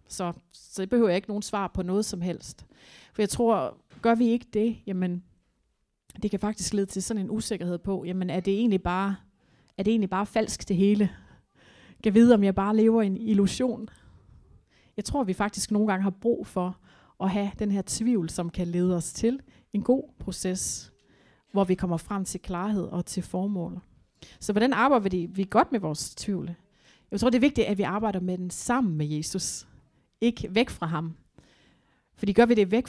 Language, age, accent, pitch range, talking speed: Danish, 30-49, native, 180-220 Hz, 205 wpm